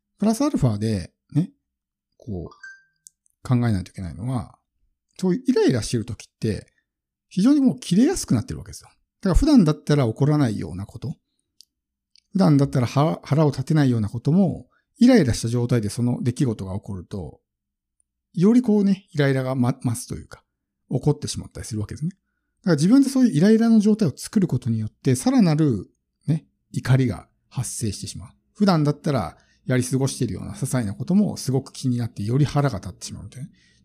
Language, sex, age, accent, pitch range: Japanese, male, 50-69, native, 105-175 Hz